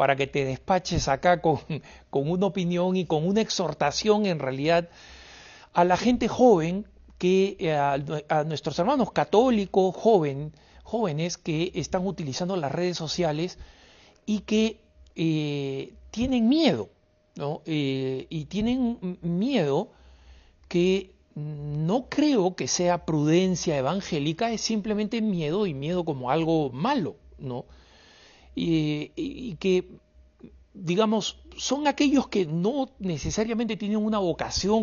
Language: Spanish